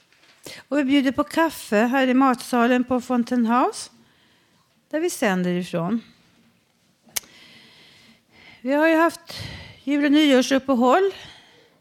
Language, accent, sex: Swedish, native, female